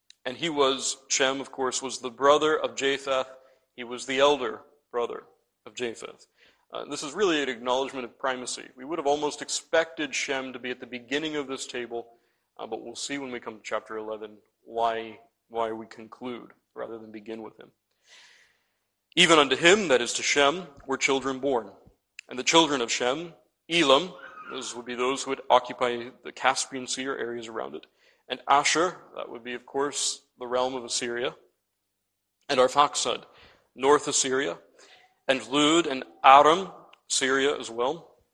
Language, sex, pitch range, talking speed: English, male, 120-140 Hz, 175 wpm